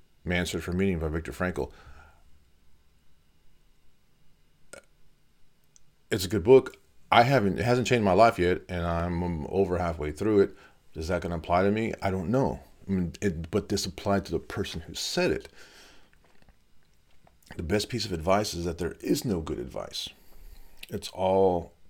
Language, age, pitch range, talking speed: English, 40-59, 80-100 Hz, 165 wpm